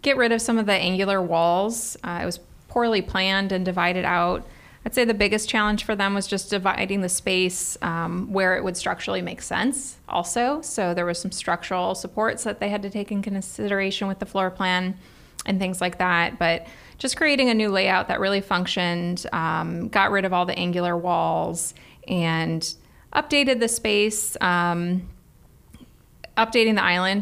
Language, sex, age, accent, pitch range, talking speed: English, female, 20-39, American, 180-215 Hz, 180 wpm